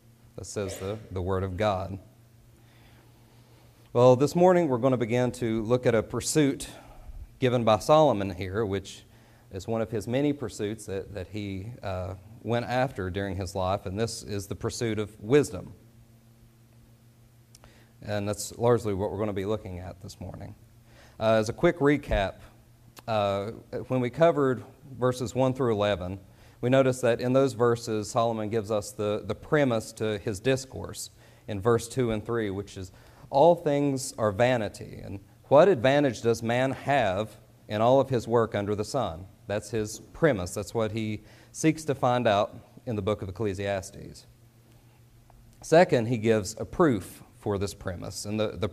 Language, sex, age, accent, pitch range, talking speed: English, male, 40-59, American, 105-125 Hz, 165 wpm